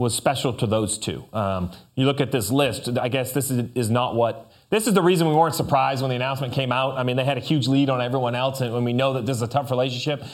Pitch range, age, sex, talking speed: 125-175 Hz, 30-49, male, 290 wpm